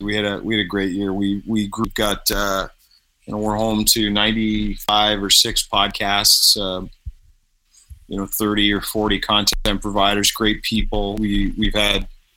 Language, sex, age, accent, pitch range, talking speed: English, male, 30-49, American, 100-115 Hz, 170 wpm